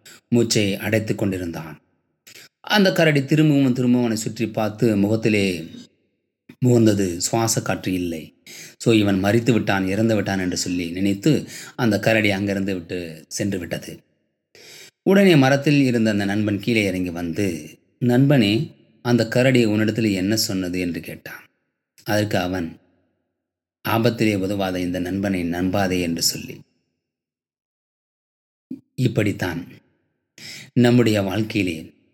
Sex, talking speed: male, 105 wpm